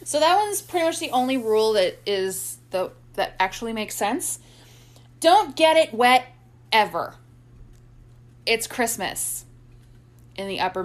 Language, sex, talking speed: English, female, 140 wpm